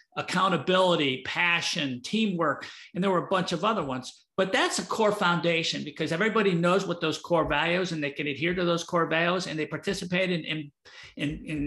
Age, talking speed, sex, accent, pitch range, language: 50-69, 185 wpm, male, American, 155-190 Hz, English